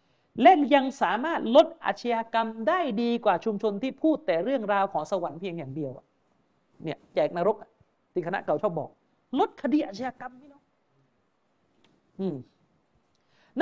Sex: male